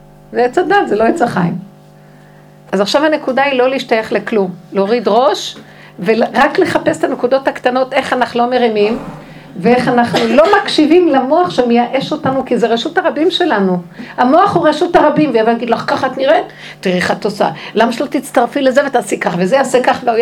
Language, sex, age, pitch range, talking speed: Hebrew, female, 60-79, 195-280 Hz, 185 wpm